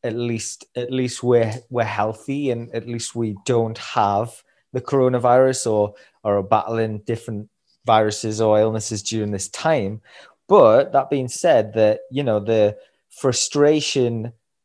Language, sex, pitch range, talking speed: English, male, 110-130 Hz, 145 wpm